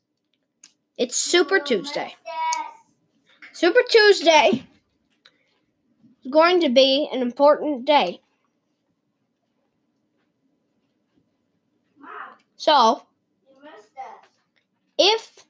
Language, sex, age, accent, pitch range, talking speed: English, female, 10-29, American, 245-310 Hz, 55 wpm